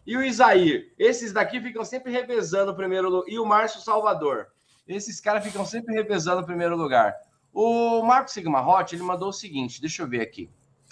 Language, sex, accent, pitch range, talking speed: Portuguese, male, Brazilian, 145-205 Hz, 185 wpm